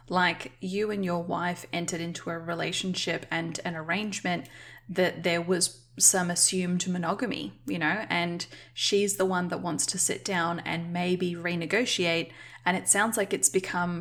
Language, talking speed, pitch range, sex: English, 165 wpm, 170-195 Hz, female